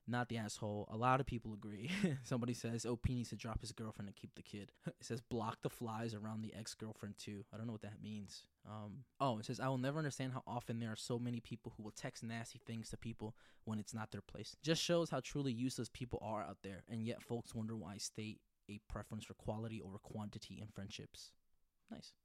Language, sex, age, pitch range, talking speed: English, male, 20-39, 110-130 Hz, 235 wpm